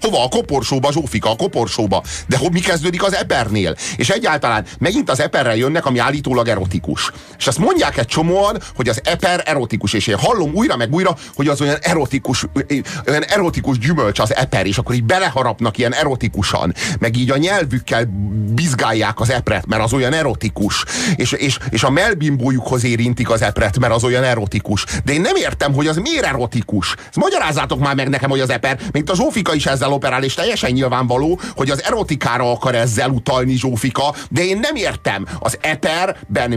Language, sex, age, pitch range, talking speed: Hungarian, male, 40-59, 120-170 Hz, 180 wpm